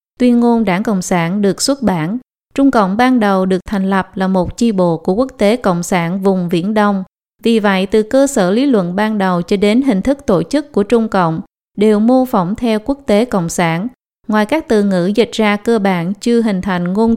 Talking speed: 225 wpm